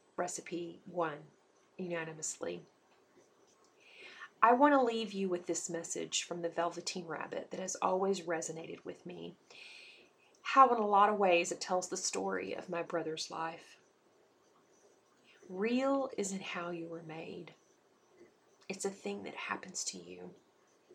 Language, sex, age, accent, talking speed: English, female, 30-49, American, 140 wpm